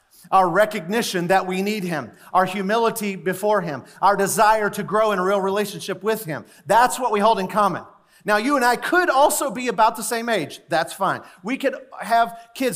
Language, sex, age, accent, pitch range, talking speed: English, male, 40-59, American, 155-220 Hz, 200 wpm